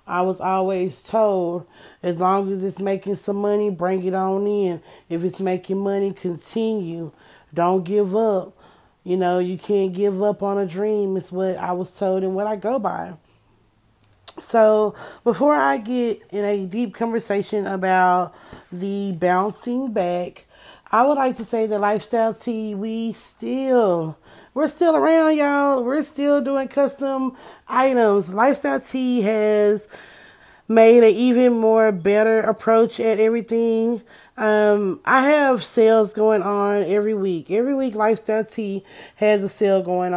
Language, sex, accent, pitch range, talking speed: English, female, American, 190-235 Hz, 150 wpm